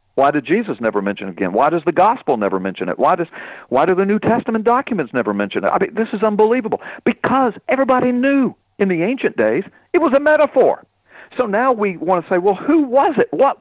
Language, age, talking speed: English, 50-69, 225 wpm